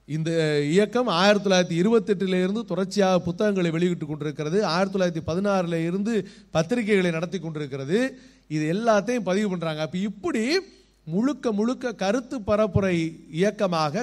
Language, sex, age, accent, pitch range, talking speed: Tamil, male, 30-49, native, 170-215 Hz, 85 wpm